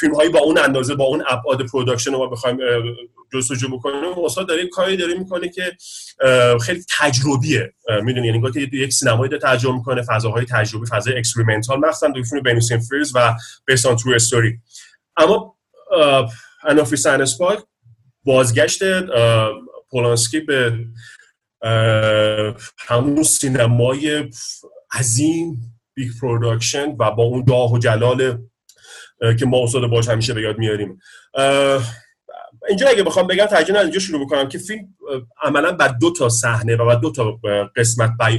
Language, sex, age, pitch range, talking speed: English, male, 30-49, 115-140 Hz, 135 wpm